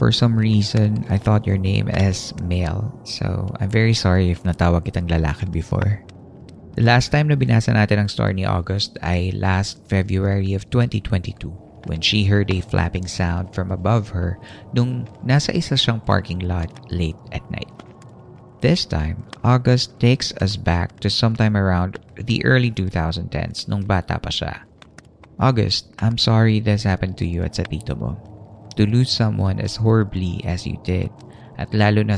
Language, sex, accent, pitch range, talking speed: Filipino, male, native, 95-115 Hz, 165 wpm